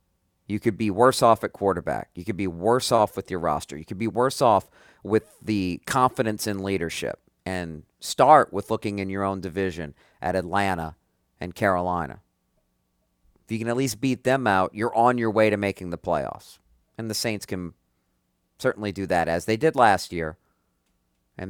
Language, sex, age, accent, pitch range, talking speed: English, male, 40-59, American, 90-110 Hz, 185 wpm